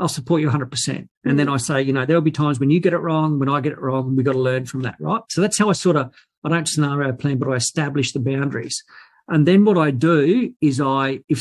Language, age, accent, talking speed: English, 50-69, Australian, 280 wpm